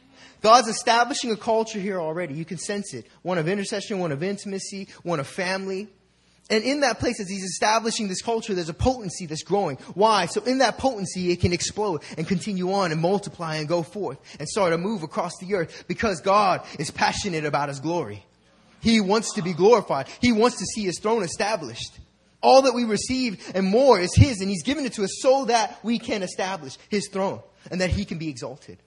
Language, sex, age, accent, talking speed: English, male, 20-39, American, 210 wpm